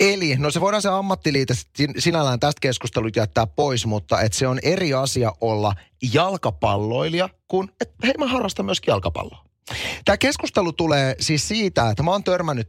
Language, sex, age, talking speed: Finnish, male, 30-49, 165 wpm